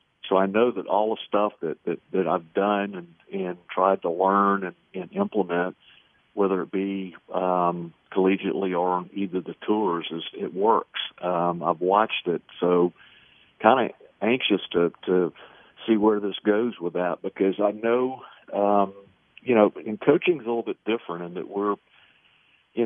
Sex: male